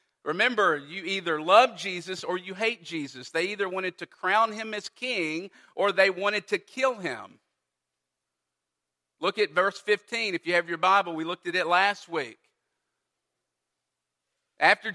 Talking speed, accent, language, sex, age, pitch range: 155 wpm, American, English, male, 50-69, 150-210 Hz